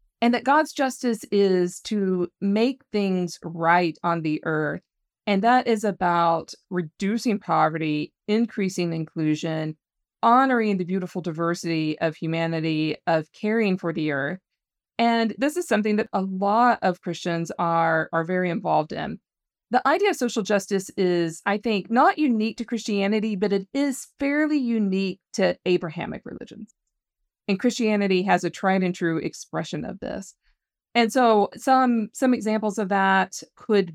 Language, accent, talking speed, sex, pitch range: English, American, 145 wpm, female, 170-220 Hz